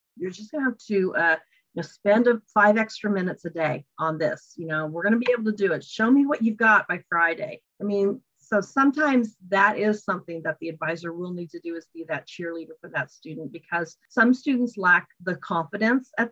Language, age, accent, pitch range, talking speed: English, 40-59, American, 180-255 Hz, 230 wpm